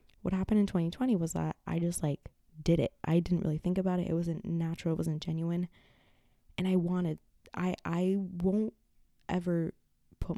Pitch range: 165-195 Hz